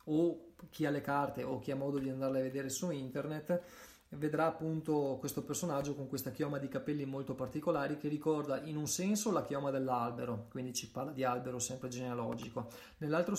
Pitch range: 130-155 Hz